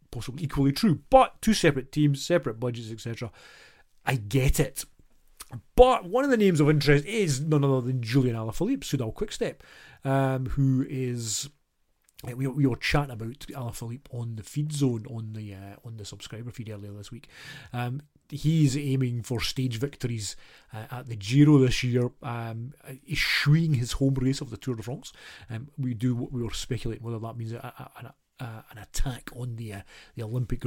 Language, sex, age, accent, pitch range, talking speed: English, male, 30-49, British, 120-150 Hz, 185 wpm